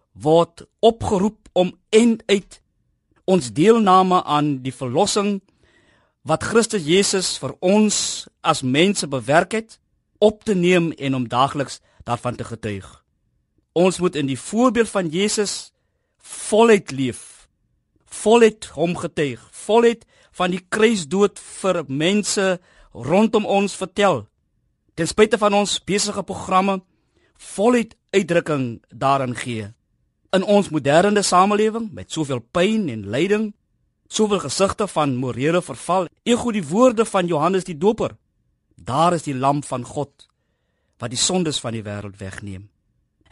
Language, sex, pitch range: Dutch, male, 135-205 Hz